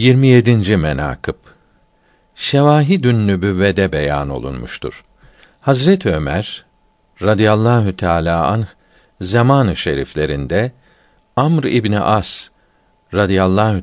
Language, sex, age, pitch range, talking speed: Turkish, male, 50-69, 95-135 Hz, 80 wpm